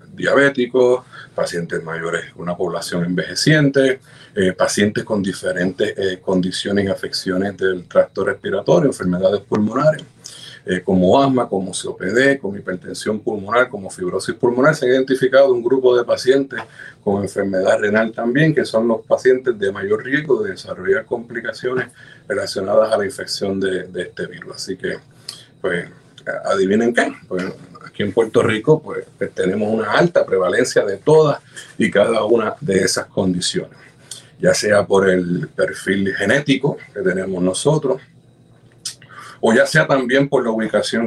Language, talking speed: Spanish, 140 wpm